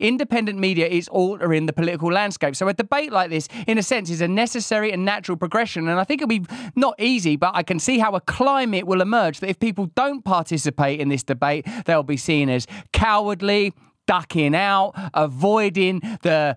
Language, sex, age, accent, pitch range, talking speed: English, male, 20-39, British, 155-200 Hz, 195 wpm